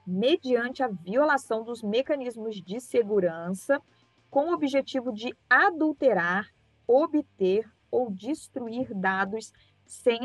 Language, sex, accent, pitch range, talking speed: Portuguese, female, Brazilian, 205-275 Hz, 100 wpm